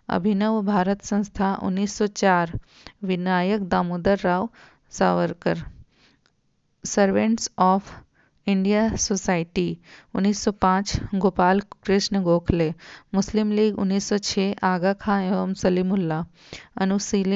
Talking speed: 80 wpm